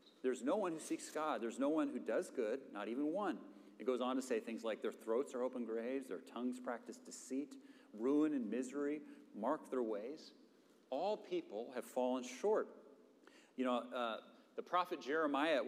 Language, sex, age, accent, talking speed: English, male, 40-59, American, 190 wpm